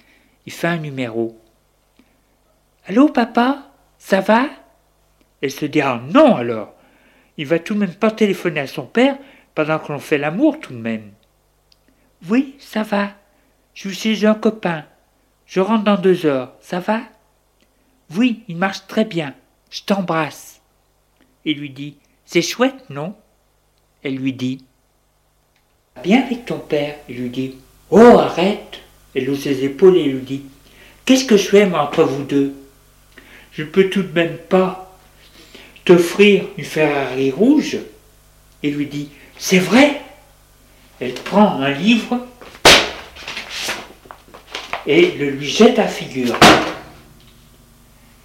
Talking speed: 155 wpm